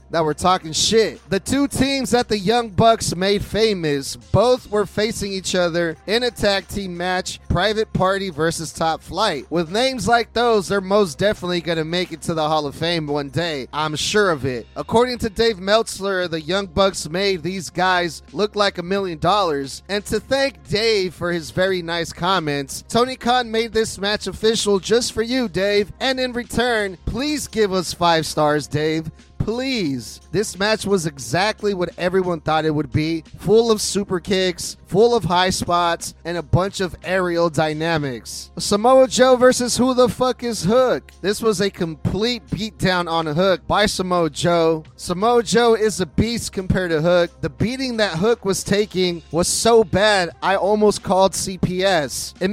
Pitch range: 170-220 Hz